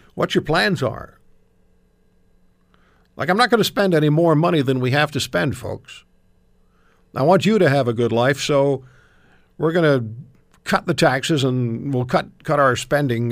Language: English